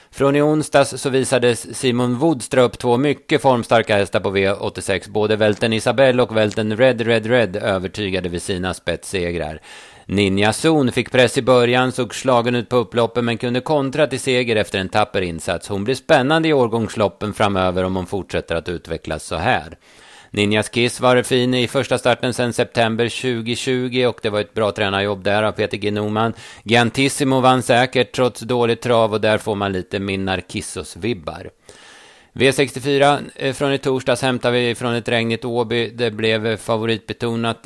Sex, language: male, Swedish